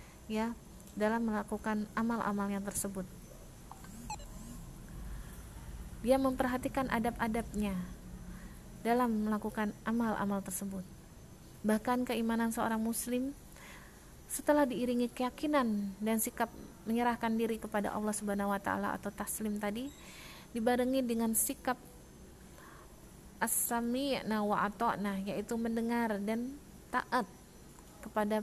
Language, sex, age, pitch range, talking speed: Indonesian, female, 20-39, 210-240 Hz, 90 wpm